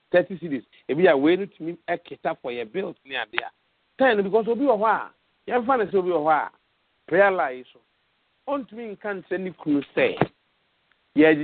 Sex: male